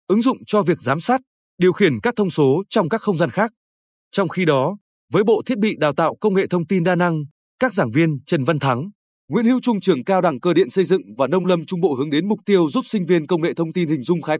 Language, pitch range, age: Vietnamese, 155-205 Hz, 20-39